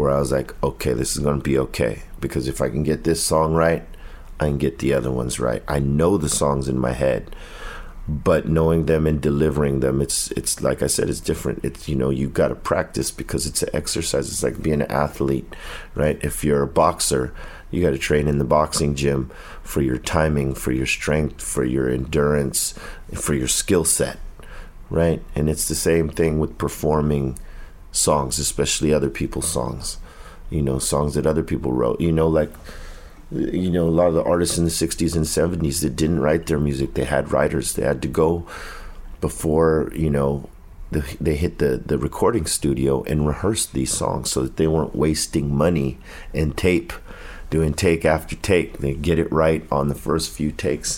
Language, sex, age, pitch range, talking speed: English, male, 40-59, 70-80 Hz, 195 wpm